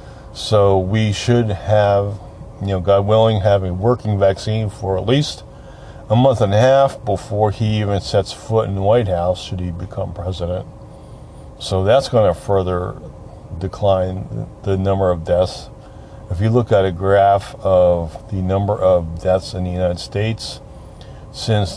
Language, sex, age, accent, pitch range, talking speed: English, male, 40-59, American, 95-110 Hz, 165 wpm